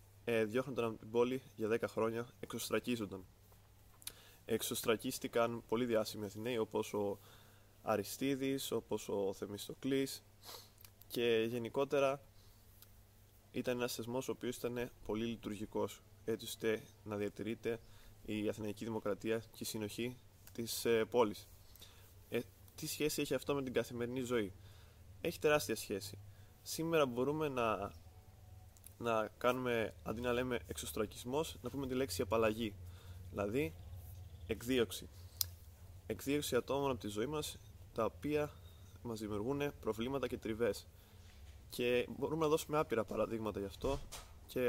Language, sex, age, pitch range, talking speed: Greek, male, 20-39, 100-120 Hz, 120 wpm